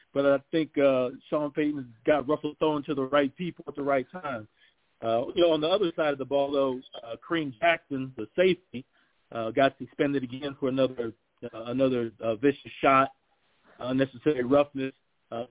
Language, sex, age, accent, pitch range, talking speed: English, male, 40-59, American, 120-150 Hz, 180 wpm